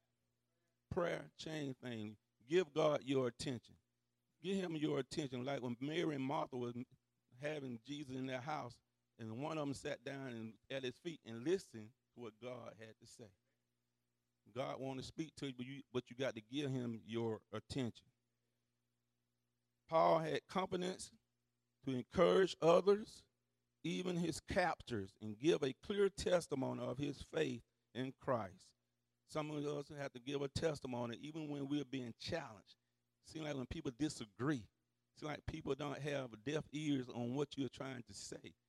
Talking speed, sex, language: 165 wpm, male, English